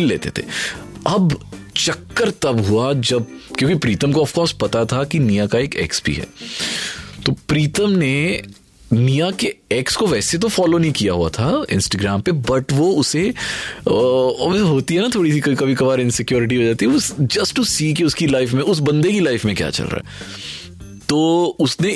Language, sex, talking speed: Hindi, male, 190 wpm